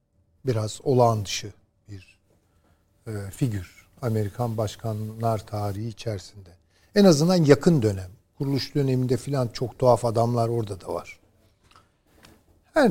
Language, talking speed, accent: Turkish, 110 wpm, native